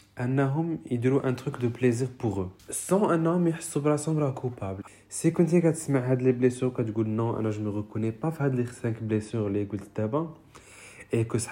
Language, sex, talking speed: French, male, 225 wpm